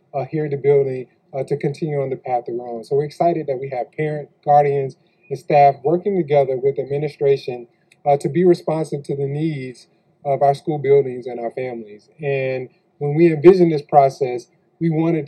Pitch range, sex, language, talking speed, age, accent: 140-175 Hz, male, English, 195 wpm, 20-39, American